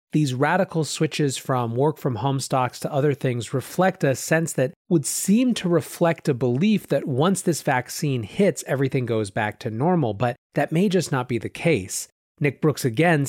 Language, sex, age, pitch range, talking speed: English, male, 30-49, 125-160 Hz, 190 wpm